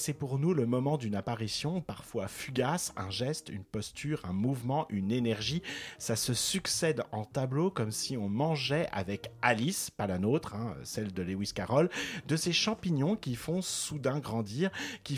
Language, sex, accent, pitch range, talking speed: French, male, French, 120-155 Hz, 175 wpm